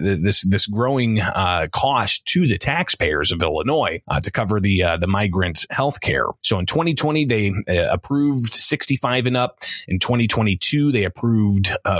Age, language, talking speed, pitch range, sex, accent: 30-49, English, 165 wpm, 95-120 Hz, male, American